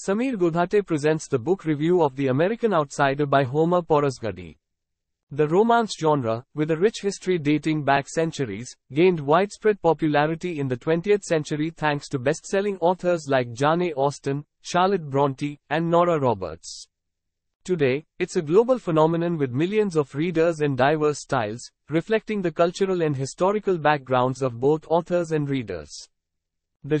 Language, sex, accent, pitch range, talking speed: English, male, Indian, 140-180 Hz, 145 wpm